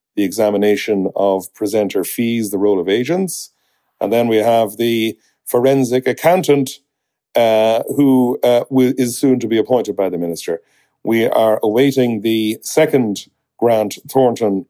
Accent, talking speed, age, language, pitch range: Irish, 140 wpm, 50-69, English, 100-130 Hz